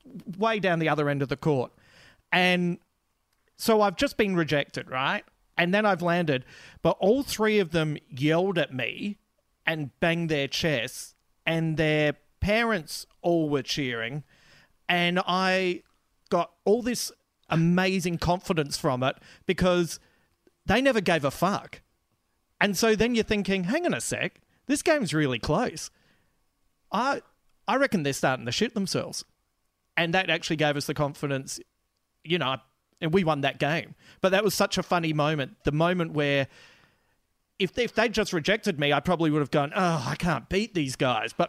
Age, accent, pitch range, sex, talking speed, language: 40-59, Australian, 145-190 Hz, male, 170 wpm, English